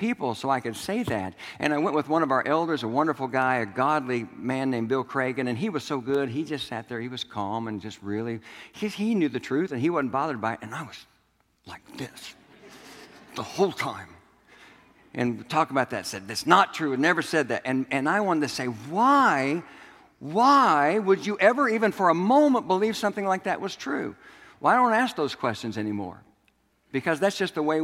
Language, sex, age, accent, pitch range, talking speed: English, male, 60-79, American, 125-185 Hz, 220 wpm